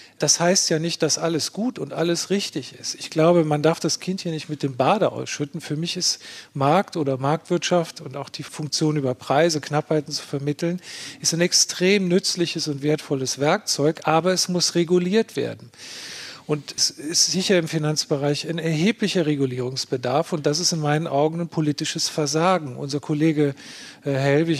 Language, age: German, 40-59